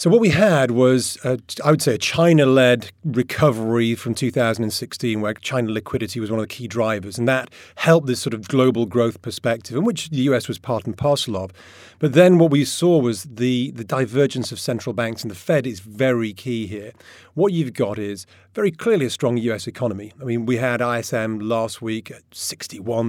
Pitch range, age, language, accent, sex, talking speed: 110-135 Hz, 40-59, English, British, male, 205 wpm